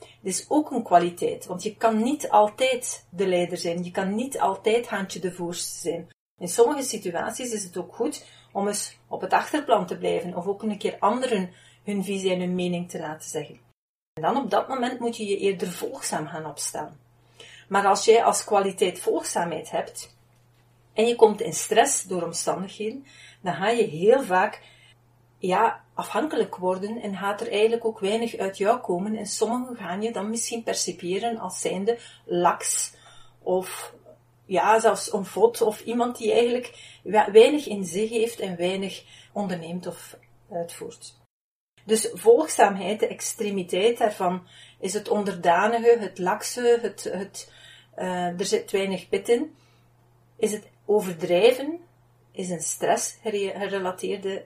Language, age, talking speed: Dutch, 40-59, 160 wpm